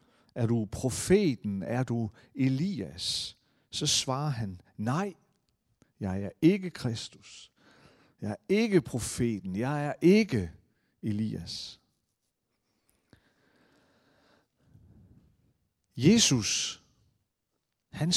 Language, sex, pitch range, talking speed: Danish, male, 110-145 Hz, 80 wpm